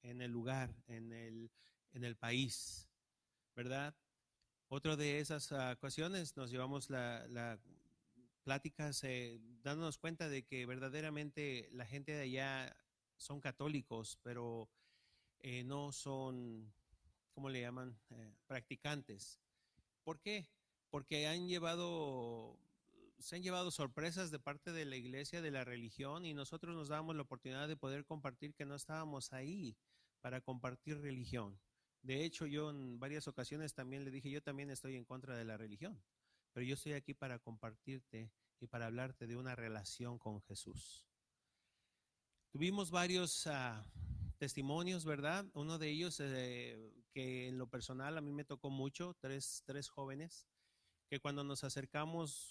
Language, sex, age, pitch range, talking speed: English, male, 40-59, 120-145 Hz, 145 wpm